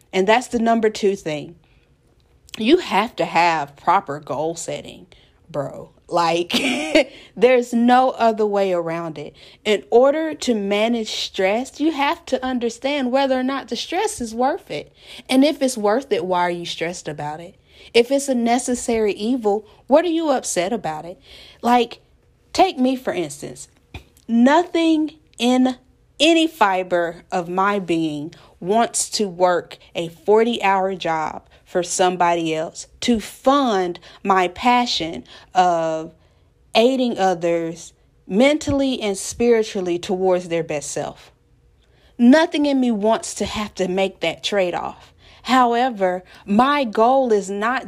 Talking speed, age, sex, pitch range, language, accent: 140 wpm, 40-59, female, 175-255 Hz, English, American